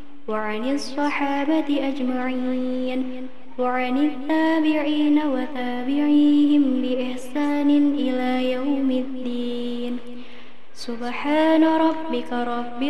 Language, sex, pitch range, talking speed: Indonesian, male, 255-300 Hz, 60 wpm